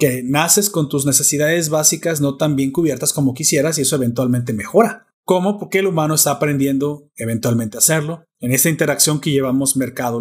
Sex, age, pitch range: male, 30-49, 140-180 Hz